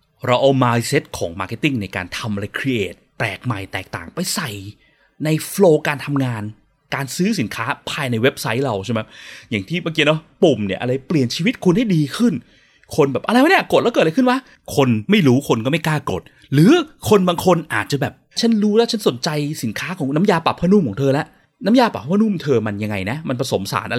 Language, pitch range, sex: Thai, 115-180 Hz, male